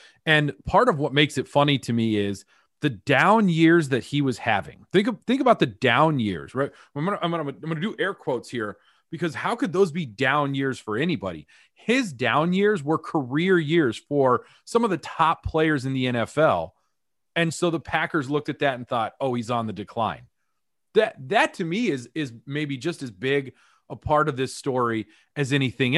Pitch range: 125-170 Hz